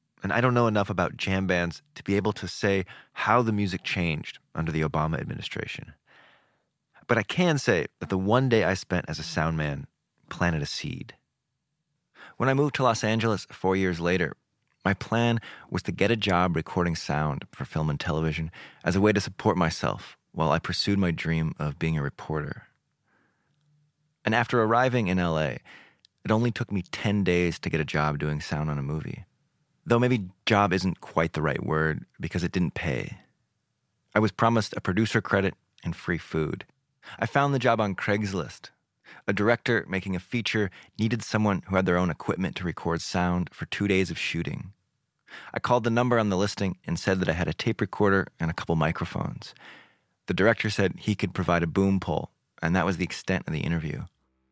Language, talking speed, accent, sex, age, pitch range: English, 195 wpm, American, male, 30-49, 85-115 Hz